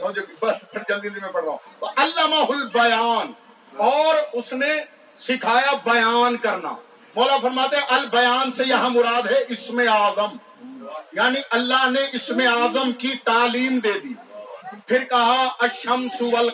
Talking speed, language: 80 wpm, Urdu